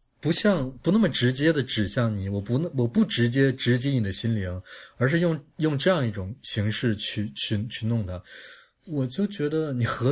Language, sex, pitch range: Chinese, male, 105-130 Hz